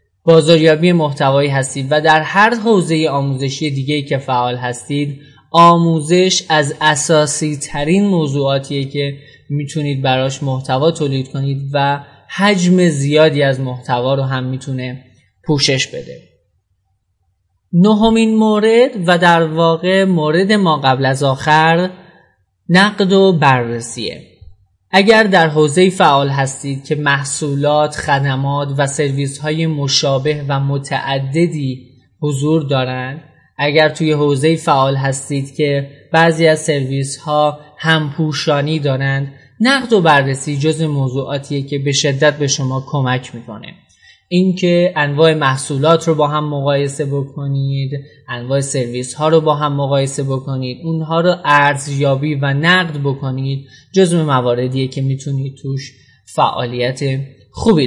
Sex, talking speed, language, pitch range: male, 115 wpm, Persian, 135-165 Hz